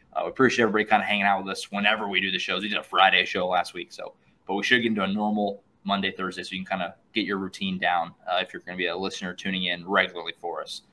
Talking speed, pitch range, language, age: 295 wpm, 100-125 Hz, English, 20-39